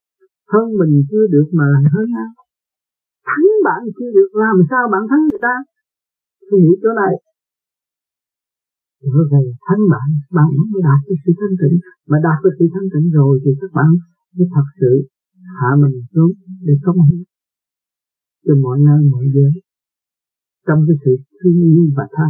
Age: 50-69